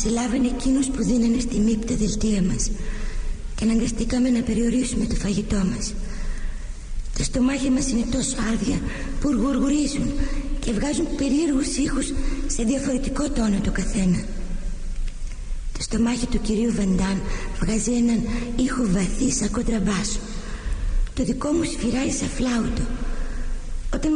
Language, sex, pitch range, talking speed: Greek, female, 195-250 Hz, 125 wpm